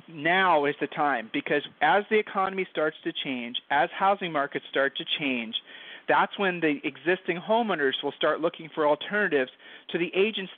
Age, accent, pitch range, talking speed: 40-59, American, 145-190 Hz, 170 wpm